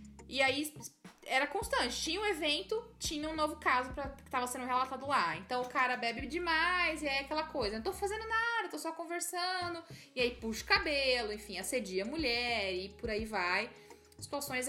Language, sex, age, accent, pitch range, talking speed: Portuguese, female, 10-29, Brazilian, 200-300 Hz, 195 wpm